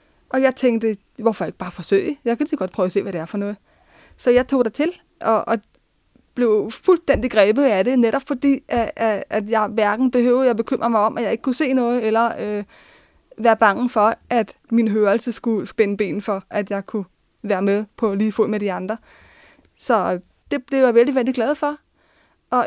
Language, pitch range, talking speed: Danish, 210-255 Hz, 215 wpm